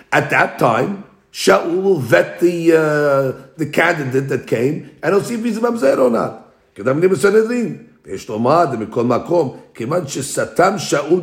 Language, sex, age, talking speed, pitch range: English, male, 50-69, 180 wpm, 140-195 Hz